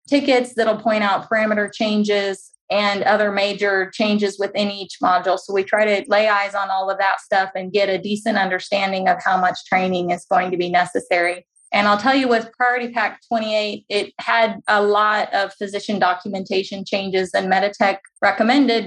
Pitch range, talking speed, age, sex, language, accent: 185-210 Hz, 180 wpm, 20-39, female, English, American